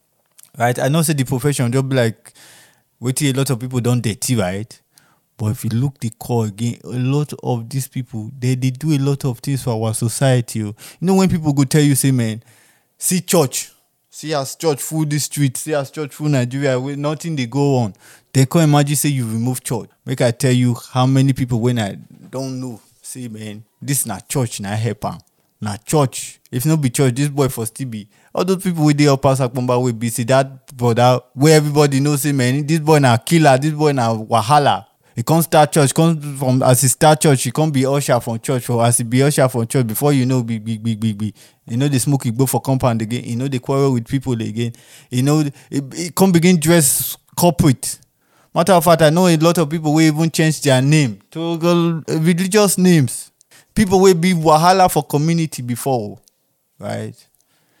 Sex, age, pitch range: male, 20-39, 125-155 Hz